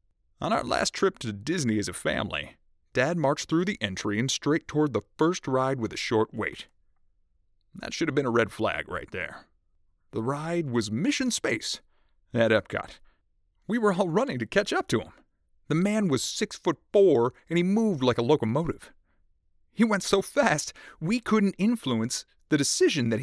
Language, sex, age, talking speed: English, male, 30-49, 185 wpm